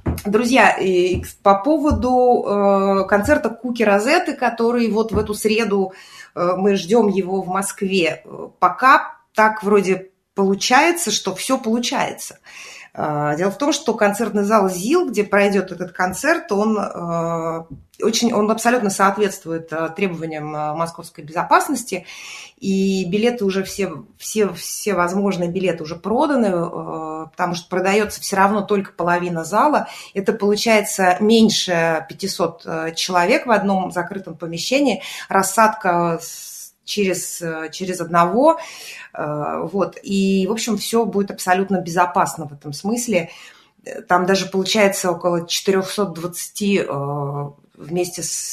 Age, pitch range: 20-39, 170-215 Hz